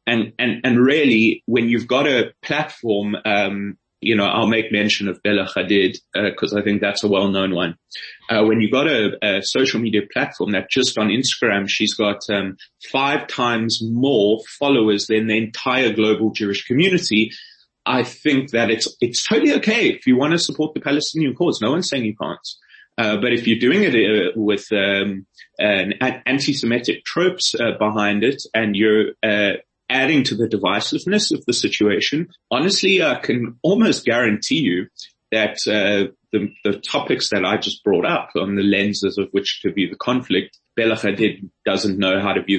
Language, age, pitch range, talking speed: English, 30-49, 100-120 Hz, 180 wpm